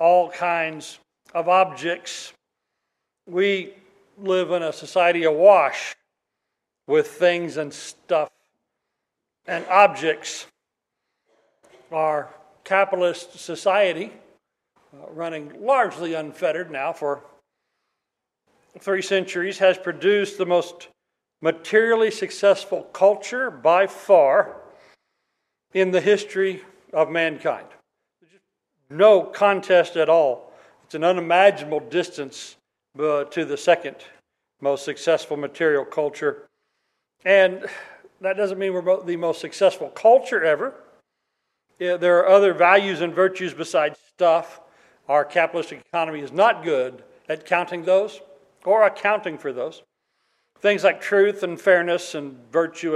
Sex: male